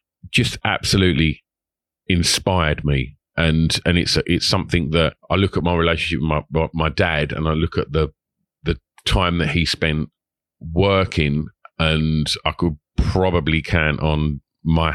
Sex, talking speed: male, 150 wpm